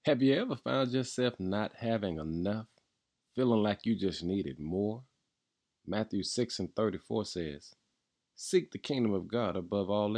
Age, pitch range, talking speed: 40-59, 90-115 Hz, 155 wpm